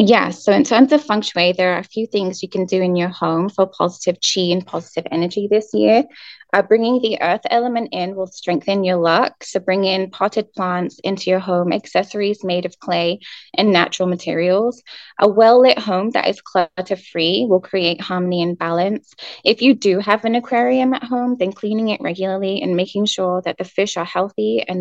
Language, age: English, 10-29